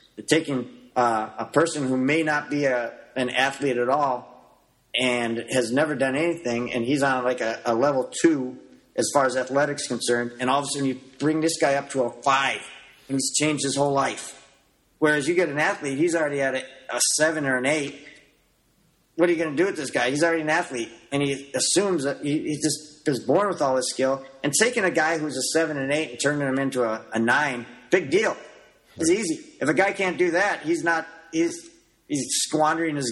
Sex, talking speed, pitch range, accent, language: male, 220 wpm, 130-160 Hz, American, English